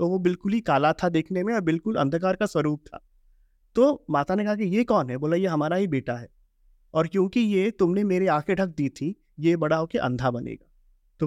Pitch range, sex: 140-195 Hz, male